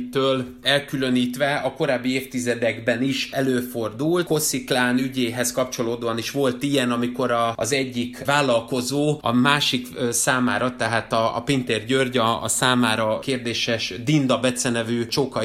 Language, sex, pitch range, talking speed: Hungarian, male, 125-150 Hz, 130 wpm